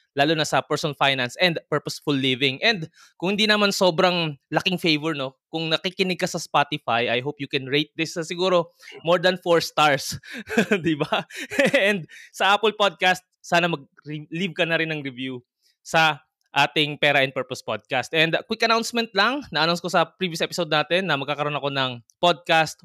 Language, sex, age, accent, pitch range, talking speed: Filipino, male, 20-39, native, 140-175 Hz, 180 wpm